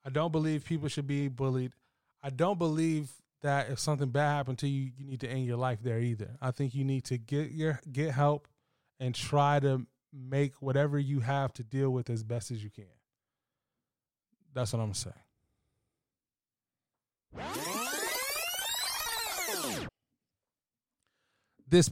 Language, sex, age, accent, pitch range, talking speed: English, male, 20-39, American, 135-170 Hz, 155 wpm